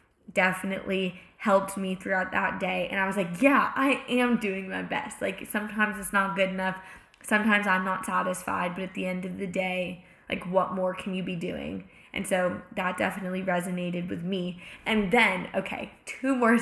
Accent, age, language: American, 10-29, English